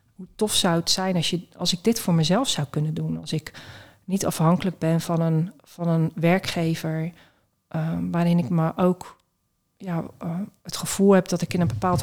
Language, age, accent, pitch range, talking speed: Dutch, 40-59, Dutch, 160-185 Hz, 200 wpm